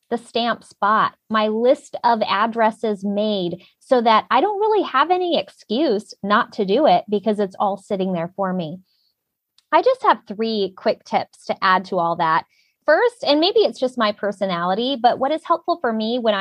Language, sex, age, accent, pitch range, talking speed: English, female, 20-39, American, 200-265 Hz, 190 wpm